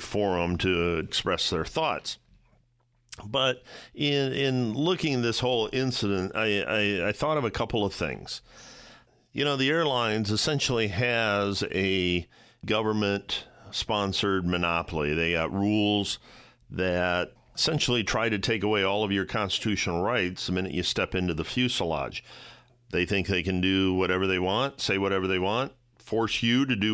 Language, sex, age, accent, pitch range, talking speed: English, male, 50-69, American, 95-125 Hz, 150 wpm